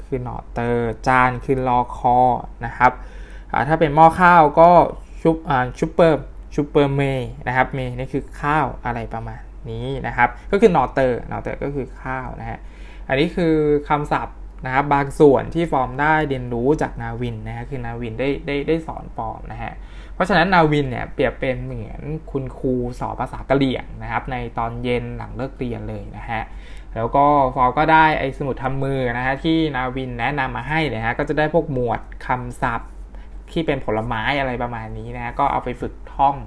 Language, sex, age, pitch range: Thai, male, 20-39, 120-150 Hz